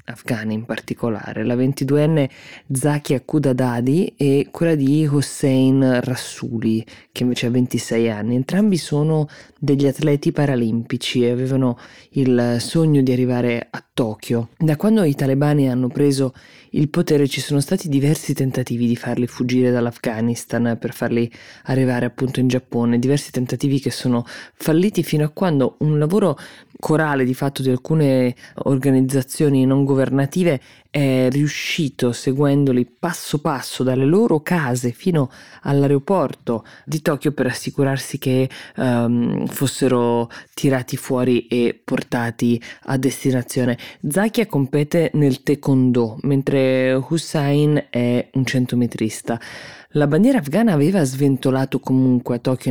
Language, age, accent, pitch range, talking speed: Italian, 20-39, native, 125-145 Hz, 125 wpm